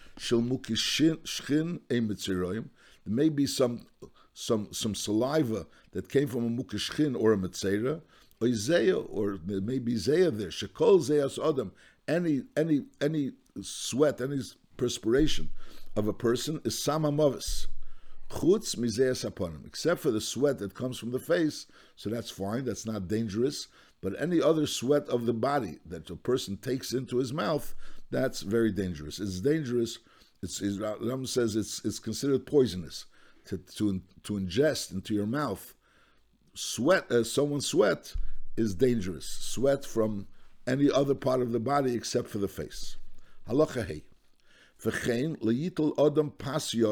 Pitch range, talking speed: 105-140 Hz, 130 wpm